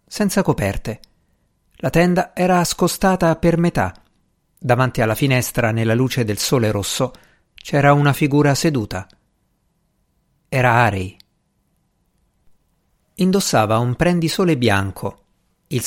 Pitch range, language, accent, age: 110-160 Hz, Italian, native, 50-69